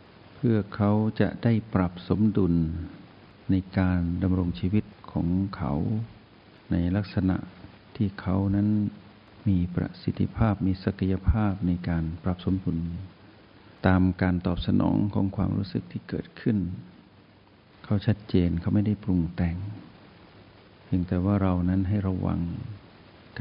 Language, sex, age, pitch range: Thai, male, 60-79, 90-105 Hz